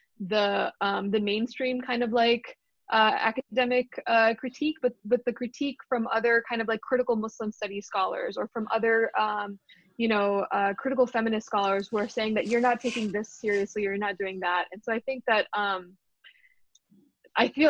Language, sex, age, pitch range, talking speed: English, female, 20-39, 205-240 Hz, 185 wpm